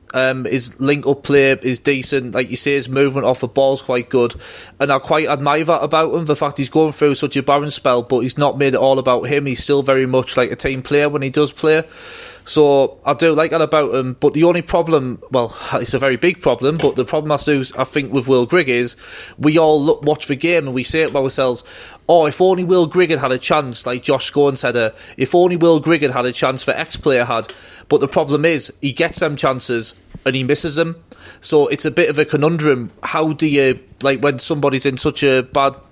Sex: male